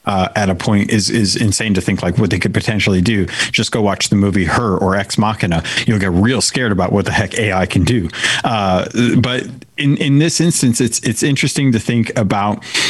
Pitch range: 100-120 Hz